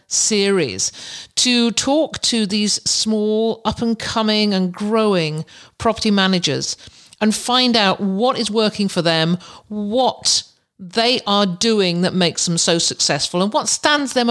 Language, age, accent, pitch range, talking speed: English, 50-69, British, 175-230 Hz, 145 wpm